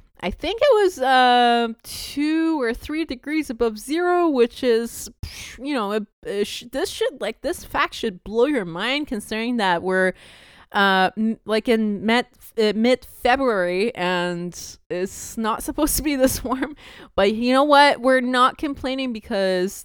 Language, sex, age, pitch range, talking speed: English, female, 20-39, 215-285 Hz, 150 wpm